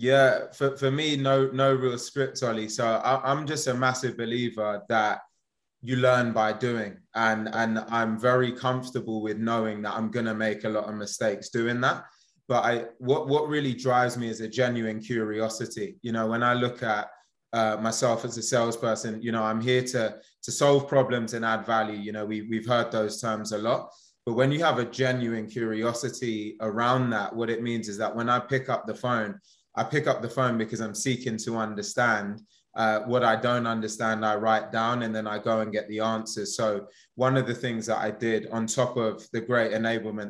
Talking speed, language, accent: 210 wpm, English, British